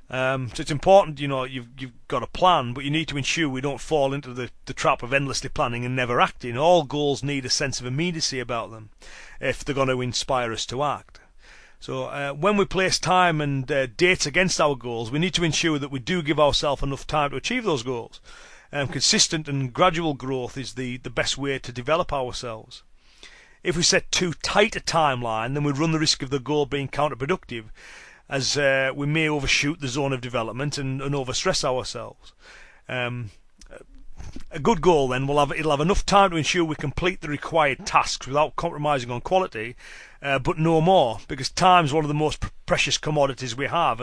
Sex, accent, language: male, British, English